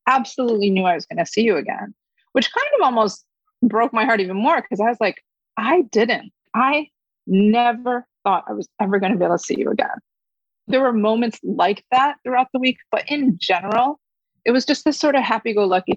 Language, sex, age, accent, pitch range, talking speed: English, female, 30-49, American, 195-255 Hz, 210 wpm